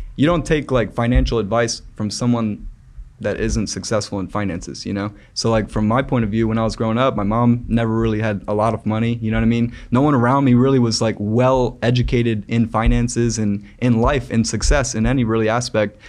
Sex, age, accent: male, 20-39, American